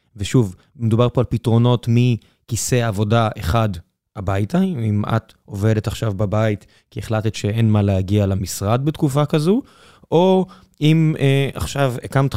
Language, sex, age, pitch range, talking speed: Hebrew, male, 20-39, 105-135 Hz, 130 wpm